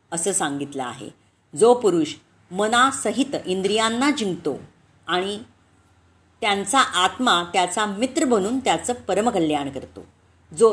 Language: Marathi